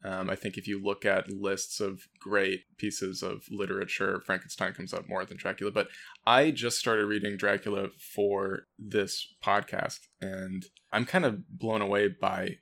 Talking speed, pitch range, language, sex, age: 165 wpm, 100-110 Hz, English, male, 20-39